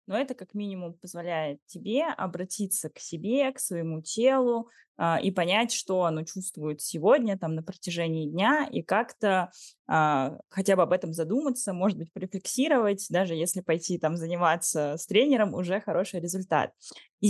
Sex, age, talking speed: female, 20-39, 145 wpm